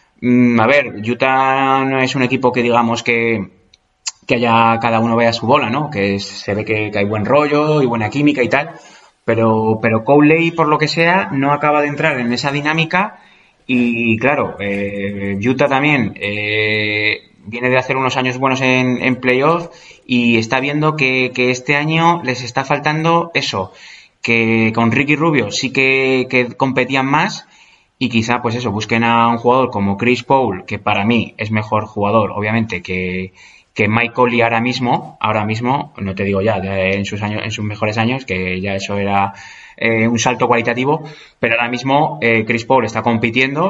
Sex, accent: male, Spanish